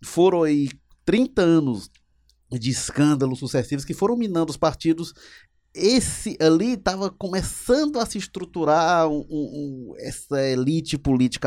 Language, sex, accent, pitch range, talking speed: Portuguese, male, Brazilian, 130-190 Hz, 130 wpm